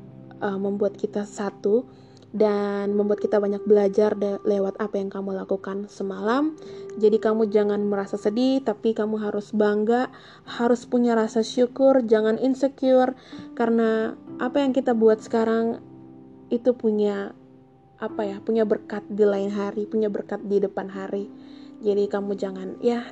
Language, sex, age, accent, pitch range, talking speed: Indonesian, female, 20-39, native, 205-240 Hz, 145 wpm